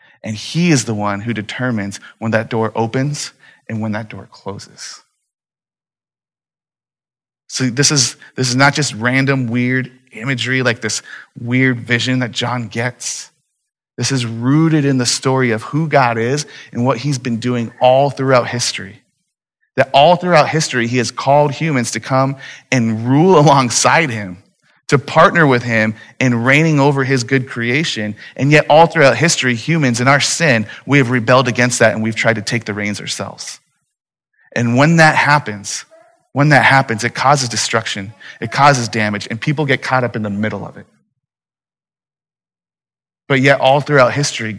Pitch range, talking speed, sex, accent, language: 115-140 Hz, 170 wpm, male, American, English